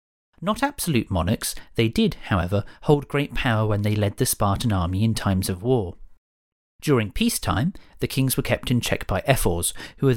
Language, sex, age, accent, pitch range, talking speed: English, male, 40-59, British, 95-135 Hz, 185 wpm